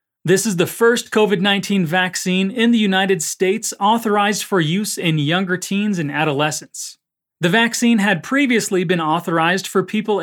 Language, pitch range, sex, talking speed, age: Portuguese, 155-210 Hz, male, 155 wpm, 30-49